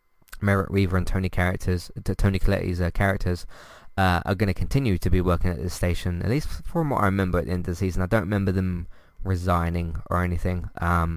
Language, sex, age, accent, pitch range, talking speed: English, male, 20-39, British, 90-110 Hz, 215 wpm